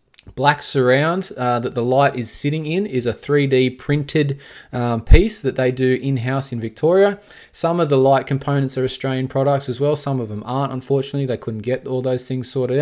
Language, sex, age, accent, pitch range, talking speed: English, male, 20-39, Australian, 115-140 Hz, 200 wpm